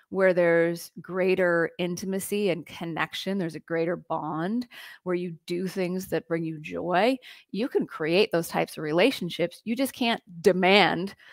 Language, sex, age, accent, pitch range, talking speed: English, female, 30-49, American, 170-200 Hz, 155 wpm